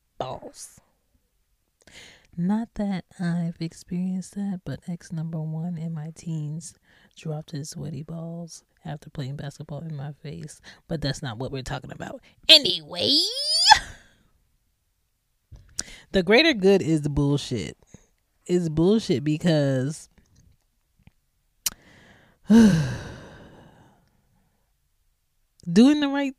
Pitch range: 145-170 Hz